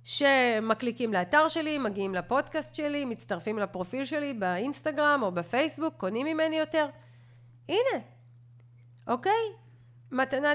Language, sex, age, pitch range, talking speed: Hebrew, female, 40-59, 185-290 Hz, 100 wpm